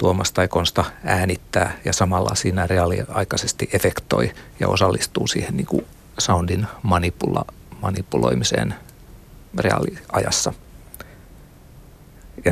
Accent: native